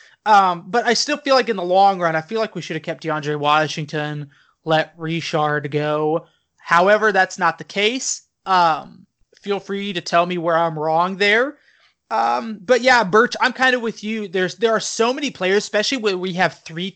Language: English